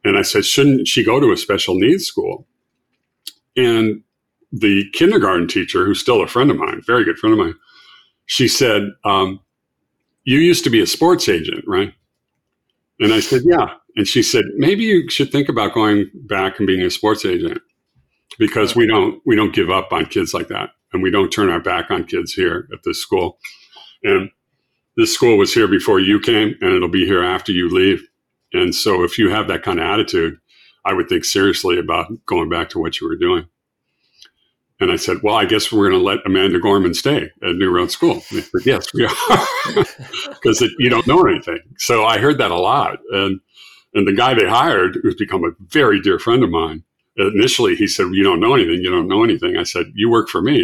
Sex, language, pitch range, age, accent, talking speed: male, English, 330-370 Hz, 50-69, American, 210 wpm